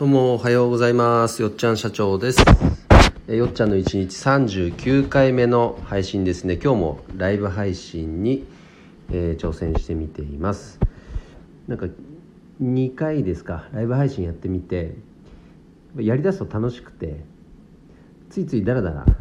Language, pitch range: Japanese, 85-125 Hz